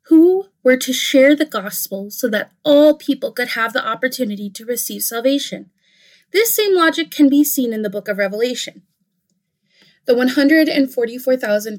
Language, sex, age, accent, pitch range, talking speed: English, female, 20-39, American, 200-265 Hz, 155 wpm